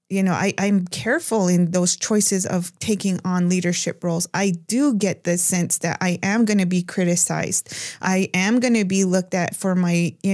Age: 20-39